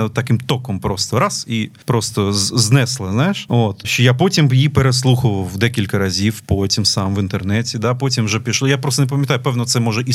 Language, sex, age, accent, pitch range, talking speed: Ukrainian, male, 30-49, native, 105-140 Hz, 190 wpm